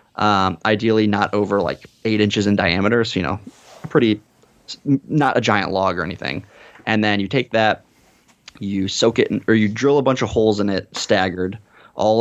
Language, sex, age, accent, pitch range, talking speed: English, male, 20-39, American, 95-110 Hz, 190 wpm